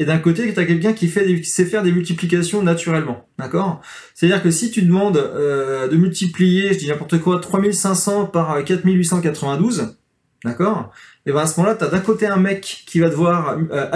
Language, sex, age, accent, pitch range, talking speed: French, male, 20-39, French, 155-195 Hz, 200 wpm